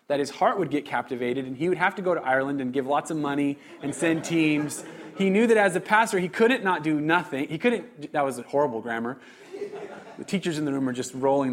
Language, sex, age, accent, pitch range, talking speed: English, male, 30-49, American, 125-155 Hz, 250 wpm